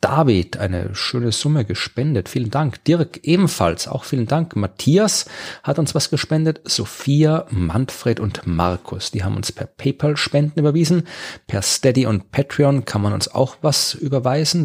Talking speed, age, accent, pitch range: 155 wpm, 40-59, German, 105-145 Hz